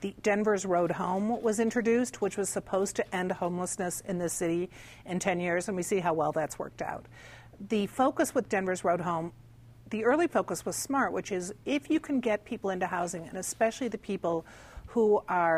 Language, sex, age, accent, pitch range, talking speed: English, female, 50-69, American, 165-215 Hz, 200 wpm